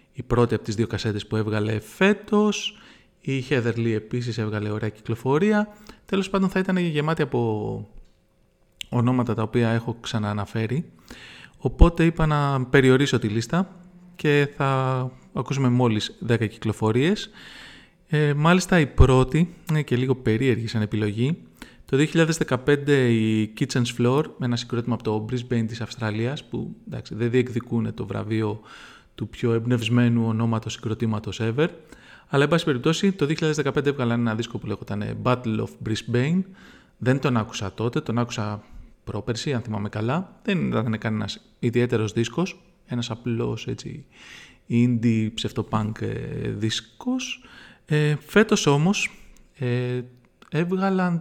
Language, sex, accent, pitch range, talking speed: English, male, Greek, 110-155 Hz, 130 wpm